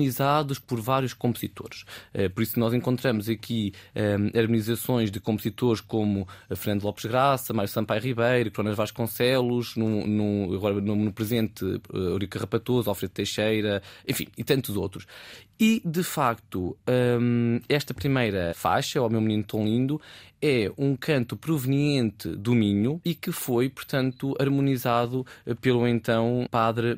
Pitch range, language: 110-130 Hz, Portuguese